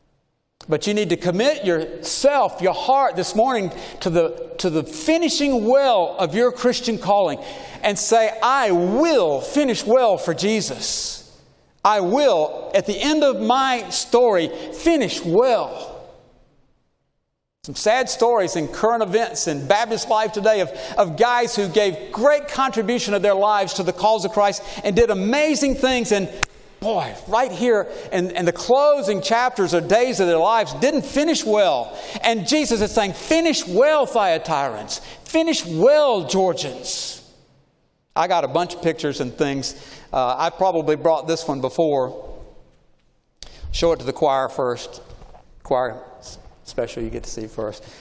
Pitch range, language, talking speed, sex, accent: 165-245 Hz, English, 150 wpm, male, American